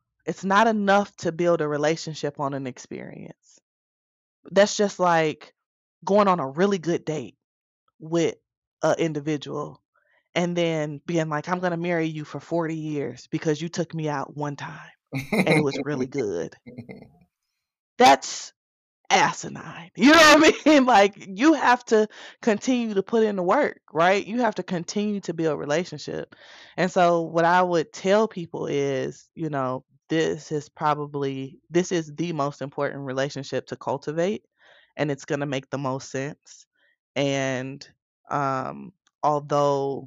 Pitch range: 140-175 Hz